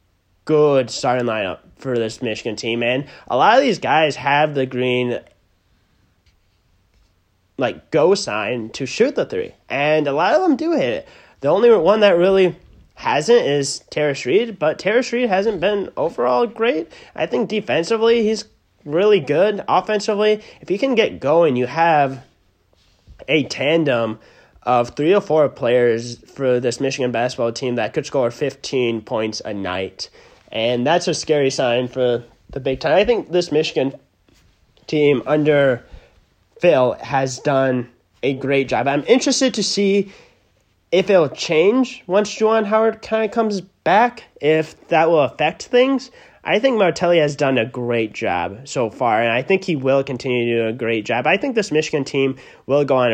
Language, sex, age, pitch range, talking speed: English, male, 20-39, 120-185 Hz, 170 wpm